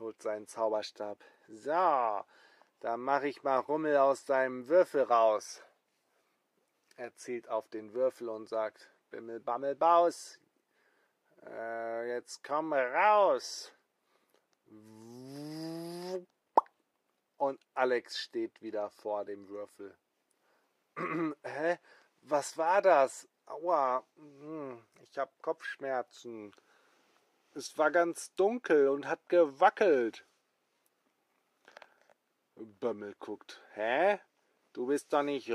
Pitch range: 110-155 Hz